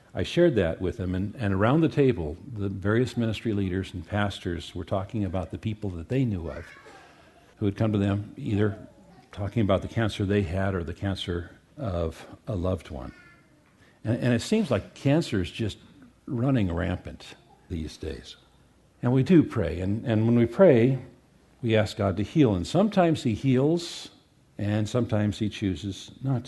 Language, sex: English, male